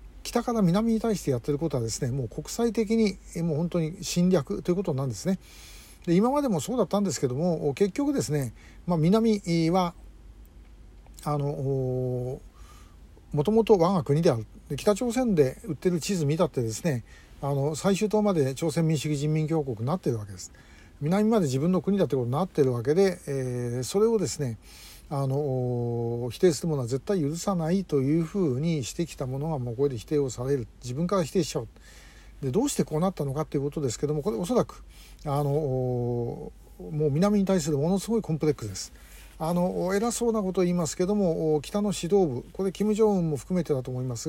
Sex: male